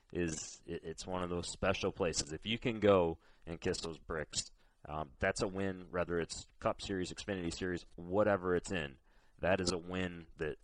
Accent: American